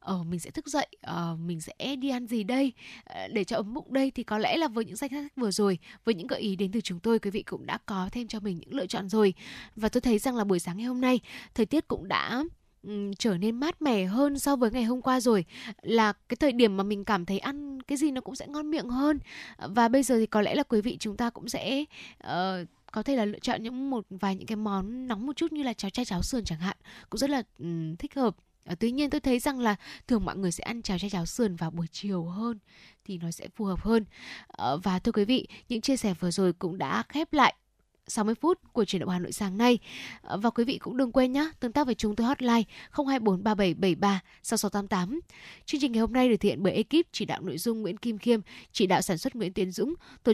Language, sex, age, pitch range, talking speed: Vietnamese, female, 10-29, 200-260 Hz, 250 wpm